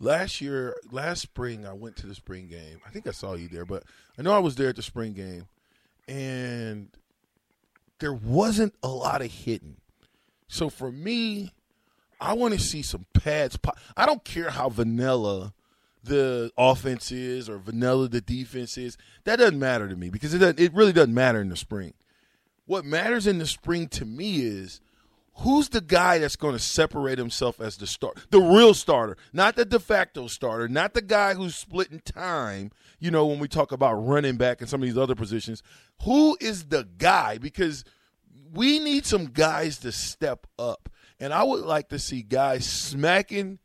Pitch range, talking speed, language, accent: 115-165 Hz, 190 wpm, English, American